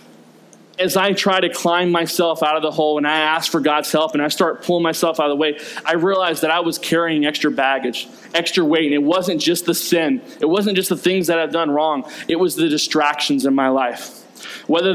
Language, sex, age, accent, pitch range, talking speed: English, male, 20-39, American, 160-210 Hz, 235 wpm